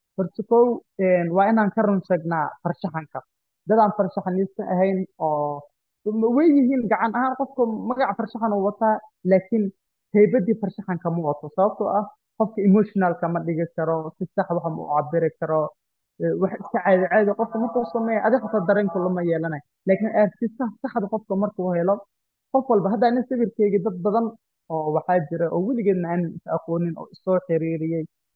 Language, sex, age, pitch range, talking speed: English, male, 30-49, 165-215 Hz, 40 wpm